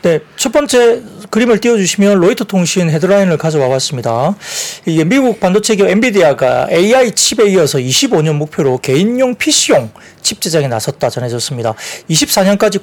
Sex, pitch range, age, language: male, 150-210 Hz, 40-59, Korean